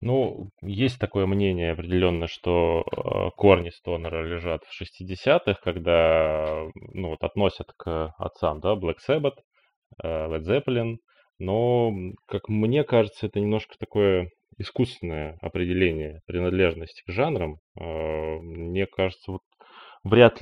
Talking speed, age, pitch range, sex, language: 120 wpm, 20-39, 85-100 Hz, male, Russian